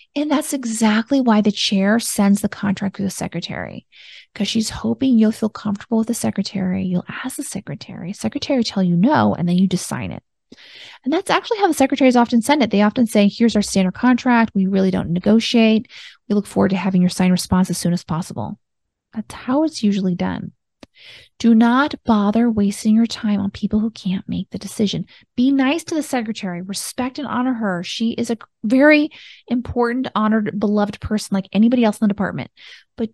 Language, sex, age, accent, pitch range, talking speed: English, female, 30-49, American, 200-250 Hz, 195 wpm